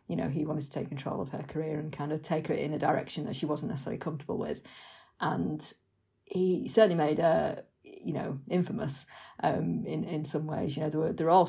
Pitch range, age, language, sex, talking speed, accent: 150-170 Hz, 40-59, English, female, 225 wpm, British